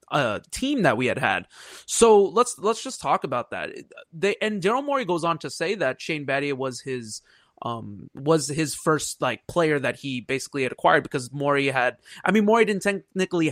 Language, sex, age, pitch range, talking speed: English, male, 20-39, 140-185 Hz, 200 wpm